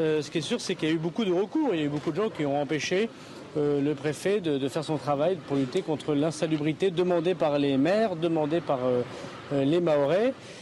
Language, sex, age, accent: French, male, 40-59, French